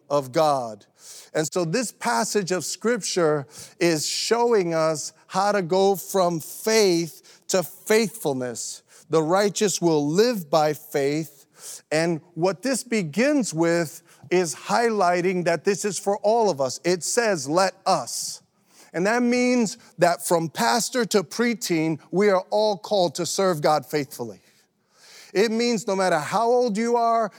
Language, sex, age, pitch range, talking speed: English, male, 40-59, 155-205 Hz, 145 wpm